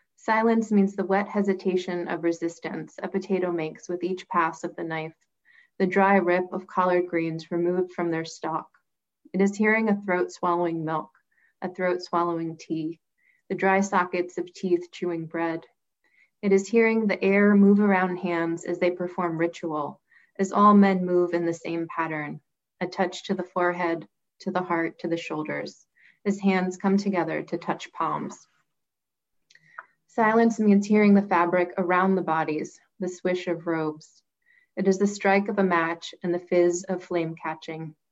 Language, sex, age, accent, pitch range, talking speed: English, female, 20-39, American, 170-195 Hz, 170 wpm